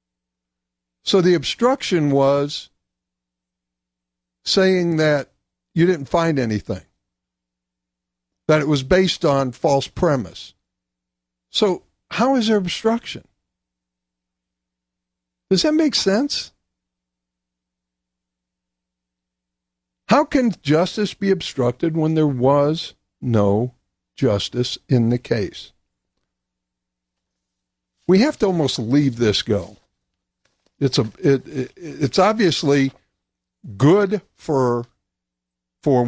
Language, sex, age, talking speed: English, male, 60-79, 90 wpm